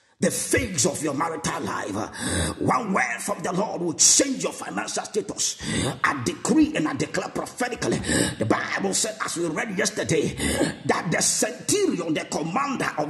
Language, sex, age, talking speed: English, male, 50-69, 160 wpm